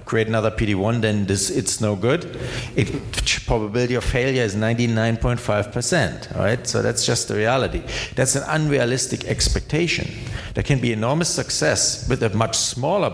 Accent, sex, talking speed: German, male, 155 wpm